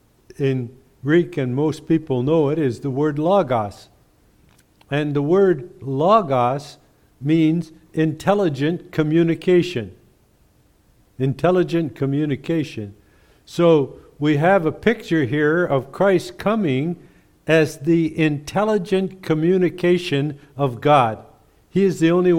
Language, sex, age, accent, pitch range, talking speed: English, male, 60-79, American, 130-165 Hz, 105 wpm